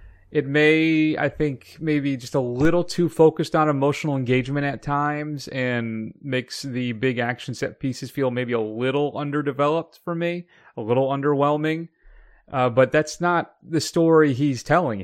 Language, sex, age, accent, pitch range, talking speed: English, male, 30-49, American, 120-145 Hz, 160 wpm